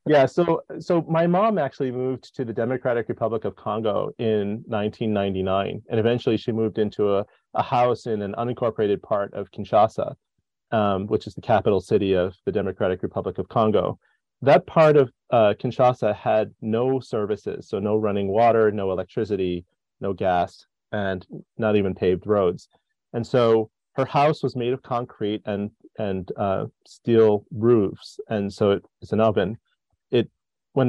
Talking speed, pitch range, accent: 160 wpm, 105-125 Hz, American